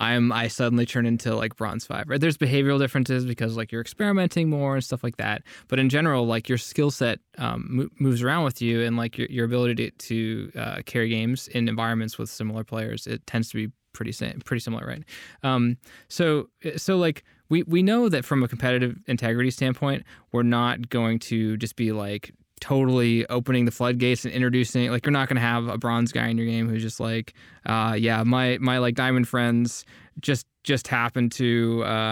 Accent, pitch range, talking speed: American, 115-130 Hz, 205 wpm